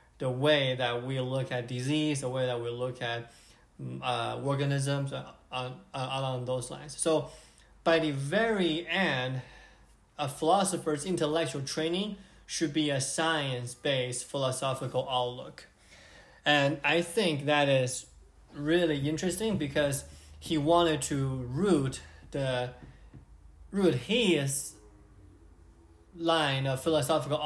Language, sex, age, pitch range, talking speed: English, male, 20-39, 125-160 Hz, 115 wpm